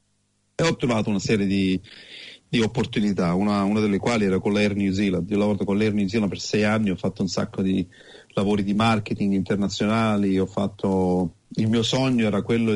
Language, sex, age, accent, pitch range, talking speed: Italian, male, 40-59, native, 100-115 Hz, 200 wpm